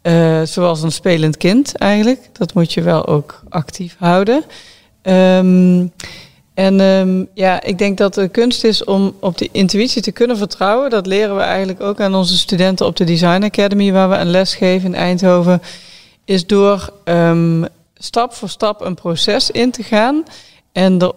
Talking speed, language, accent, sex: 165 wpm, Dutch, Dutch, female